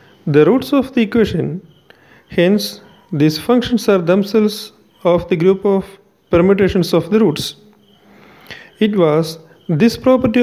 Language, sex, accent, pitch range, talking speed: English, male, Indian, 165-215 Hz, 125 wpm